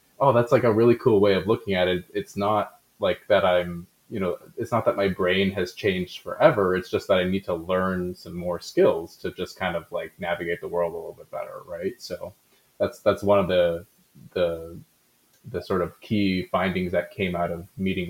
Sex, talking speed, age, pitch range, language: male, 220 wpm, 20-39, 90-110 Hz, English